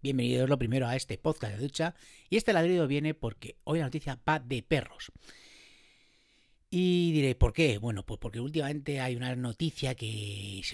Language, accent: Spanish, Spanish